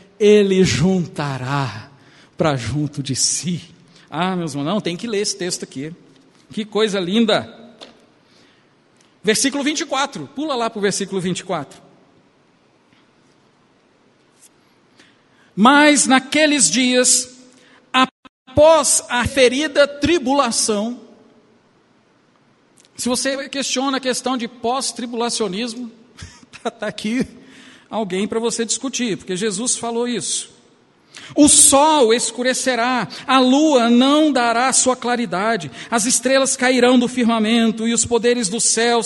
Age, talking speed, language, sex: 50-69, 110 wpm, Portuguese, male